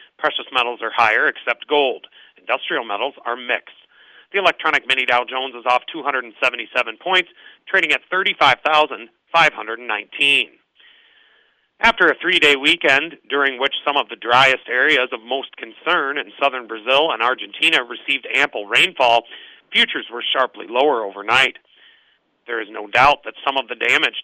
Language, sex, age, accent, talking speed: English, male, 40-59, American, 145 wpm